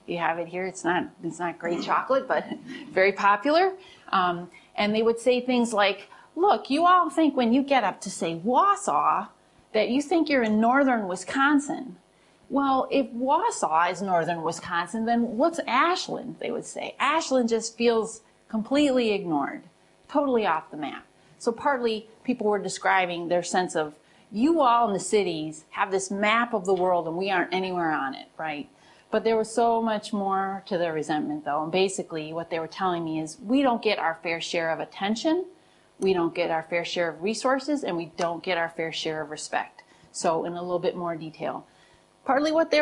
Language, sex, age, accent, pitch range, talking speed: English, female, 30-49, American, 170-245 Hz, 195 wpm